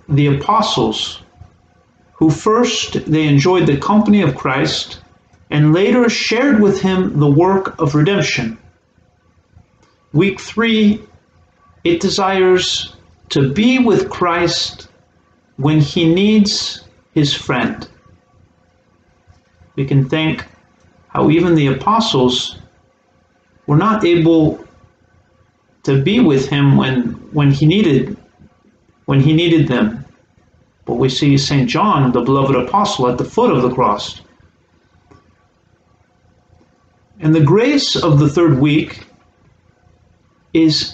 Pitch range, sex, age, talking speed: 105-170 Hz, male, 40-59, 110 wpm